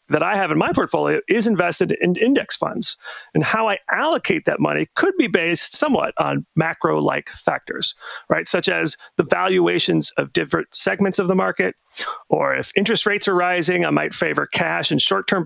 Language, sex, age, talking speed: English, male, 40-59, 185 wpm